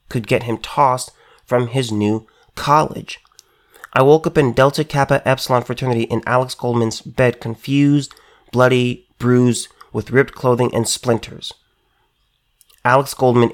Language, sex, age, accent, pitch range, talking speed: English, male, 30-49, American, 115-145 Hz, 135 wpm